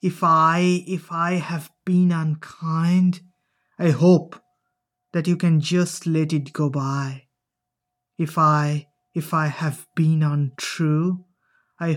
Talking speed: 125 wpm